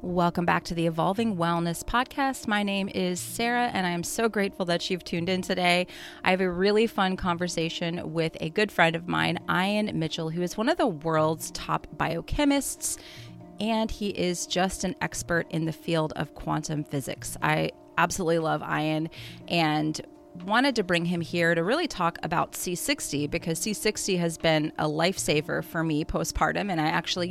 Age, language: 30-49, English